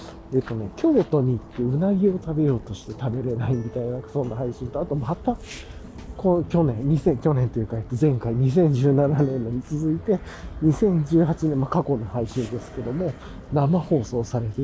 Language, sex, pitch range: Japanese, male, 115-170 Hz